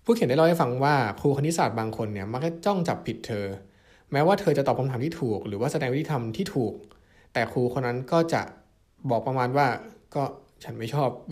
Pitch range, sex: 110-145 Hz, male